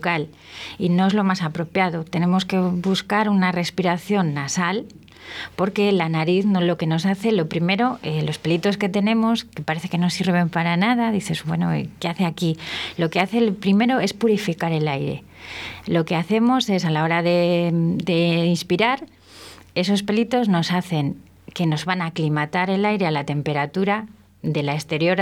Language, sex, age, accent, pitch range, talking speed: Spanish, female, 30-49, Spanish, 165-195 Hz, 180 wpm